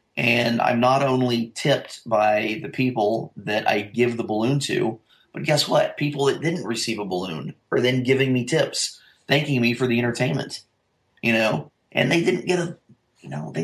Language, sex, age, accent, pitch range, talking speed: English, male, 30-49, American, 110-135 Hz, 190 wpm